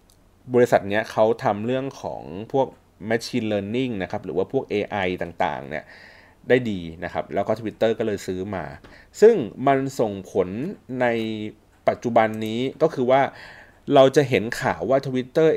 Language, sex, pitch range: Thai, male, 95-130 Hz